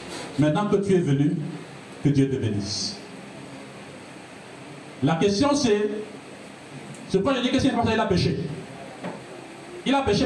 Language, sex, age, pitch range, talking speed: French, male, 50-69, 165-250 Hz, 145 wpm